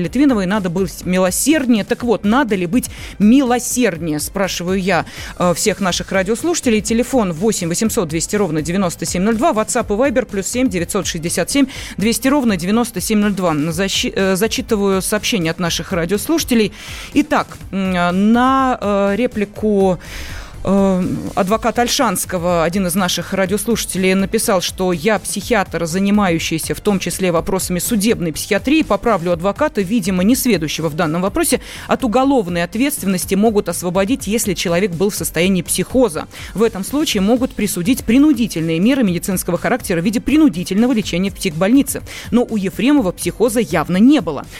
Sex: female